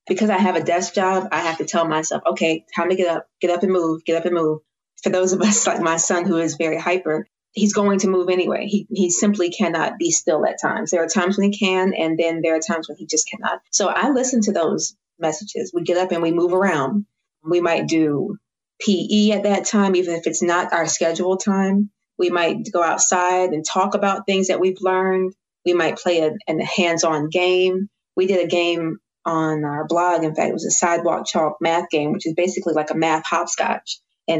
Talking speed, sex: 230 wpm, female